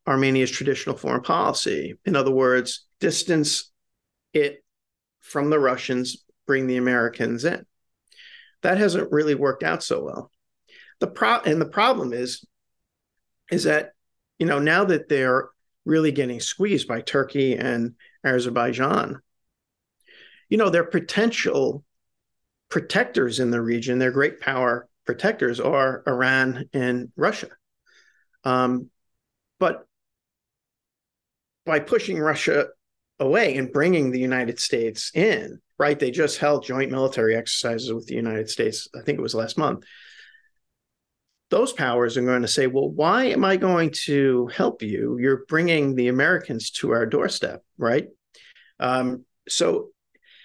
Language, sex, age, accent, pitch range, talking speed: English, male, 50-69, American, 125-185 Hz, 135 wpm